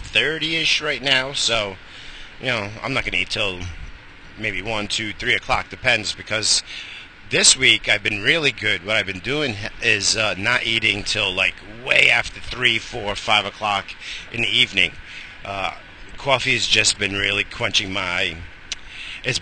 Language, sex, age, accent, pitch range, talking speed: English, male, 50-69, American, 95-120 Hz, 165 wpm